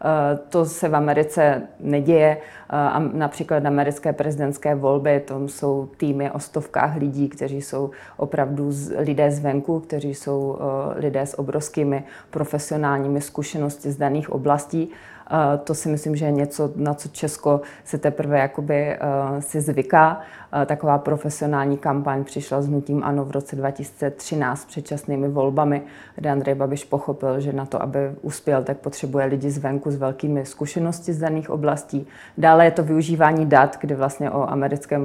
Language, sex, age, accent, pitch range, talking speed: Czech, female, 30-49, native, 140-150 Hz, 150 wpm